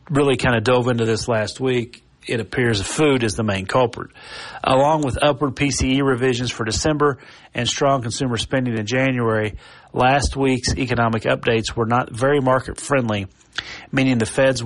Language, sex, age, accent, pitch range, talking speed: English, male, 40-59, American, 115-135 Hz, 160 wpm